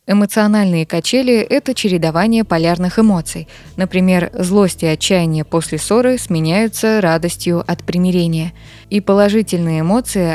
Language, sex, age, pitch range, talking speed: Russian, female, 20-39, 170-210 Hz, 110 wpm